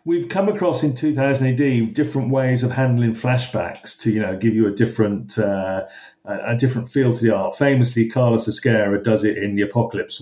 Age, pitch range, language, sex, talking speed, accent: 40-59, 105-145 Hz, English, male, 195 wpm, British